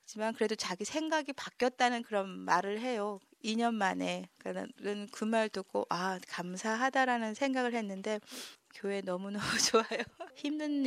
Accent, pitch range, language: native, 190-245 Hz, Korean